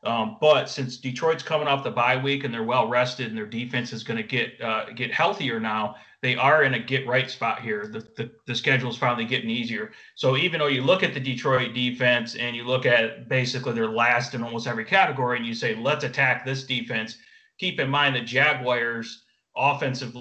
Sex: male